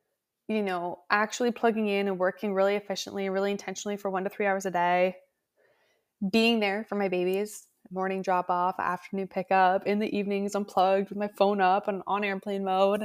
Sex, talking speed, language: female, 185 wpm, English